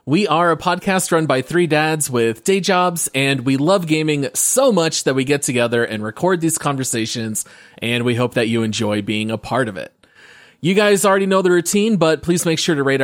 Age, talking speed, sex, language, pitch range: 30-49, 220 wpm, male, English, 120-180 Hz